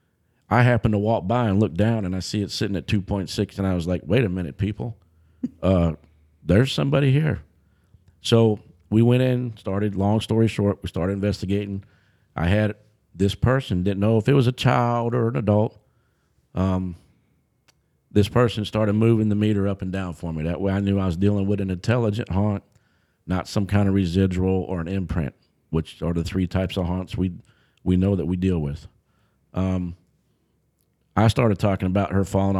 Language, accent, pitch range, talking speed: English, American, 95-110 Hz, 190 wpm